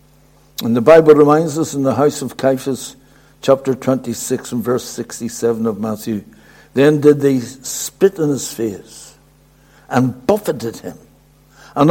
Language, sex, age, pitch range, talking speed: English, male, 60-79, 115-150 Hz, 140 wpm